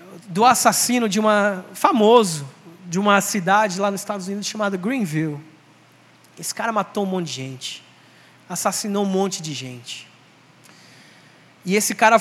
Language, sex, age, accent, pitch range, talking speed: Portuguese, male, 20-39, Brazilian, 175-215 Hz, 145 wpm